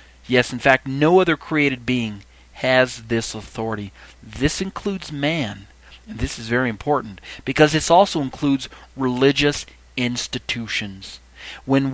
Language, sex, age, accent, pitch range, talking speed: English, male, 40-59, American, 115-150 Hz, 125 wpm